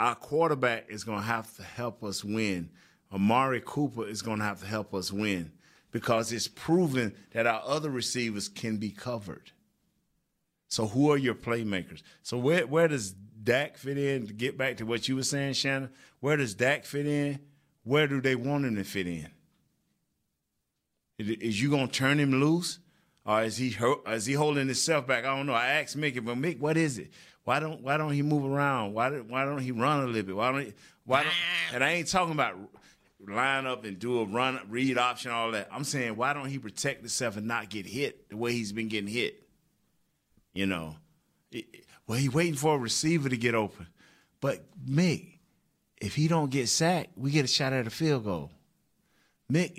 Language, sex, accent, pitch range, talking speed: English, male, American, 115-145 Hz, 205 wpm